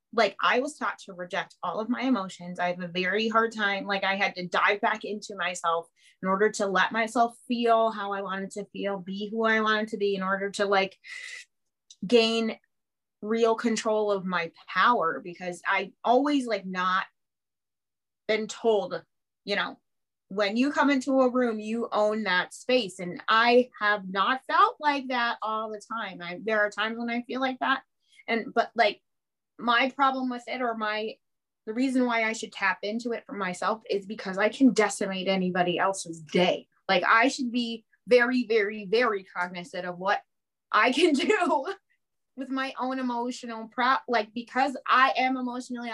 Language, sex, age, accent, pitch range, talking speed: English, female, 30-49, American, 200-255 Hz, 180 wpm